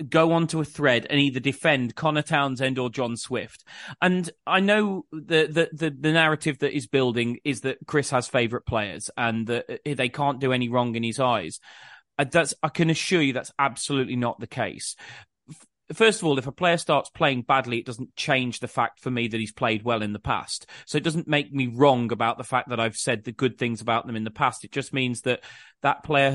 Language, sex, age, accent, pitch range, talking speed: English, male, 30-49, British, 130-170 Hz, 225 wpm